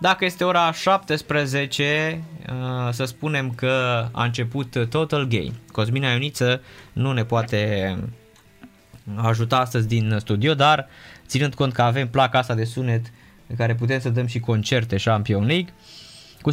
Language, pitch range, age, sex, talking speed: Romanian, 110-150 Hz, 20-39, male, 140 wpm